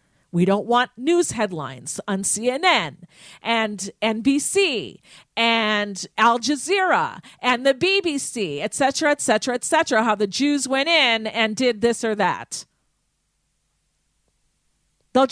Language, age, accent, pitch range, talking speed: English, 50-69, American, 215-275 Hz, 125 wpm